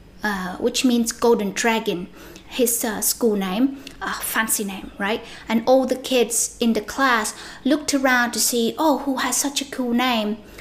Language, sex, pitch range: Vietnamese, female, 220-265 Hz